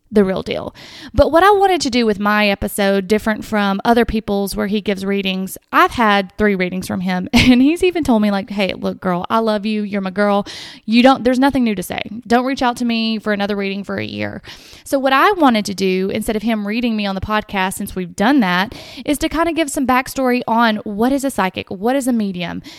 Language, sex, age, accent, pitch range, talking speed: English, female, 20-39, American, 200-255 Hz, 245 wpm